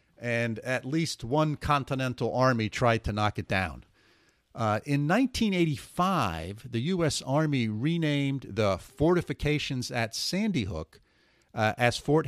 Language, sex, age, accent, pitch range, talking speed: English, male, 50-69, American, 105-140 Hz, 120 wpm